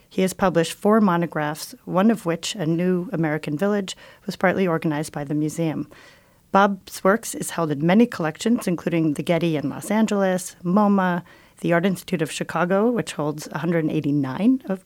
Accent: American